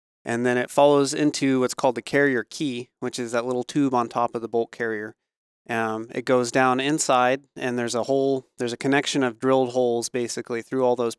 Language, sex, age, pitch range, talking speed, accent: English, male, 30-49, 115-135 Hz, 215 wpm, American